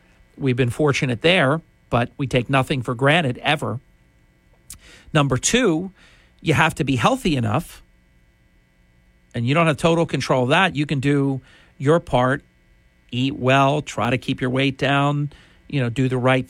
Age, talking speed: 50-69, 165 wpm